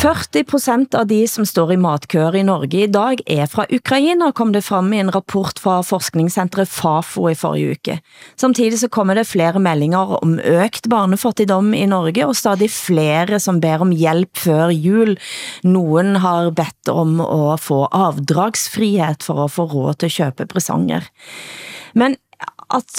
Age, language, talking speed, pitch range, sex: 30-49, Danish, 165 wpm, 165-215 Hz, female